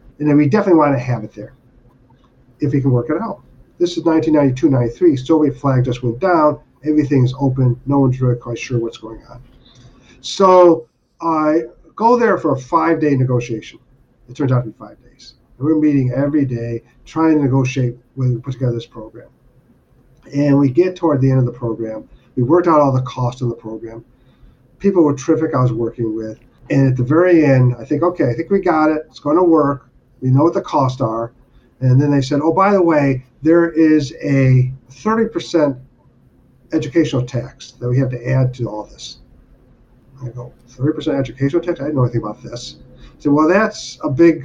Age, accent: 50-69, American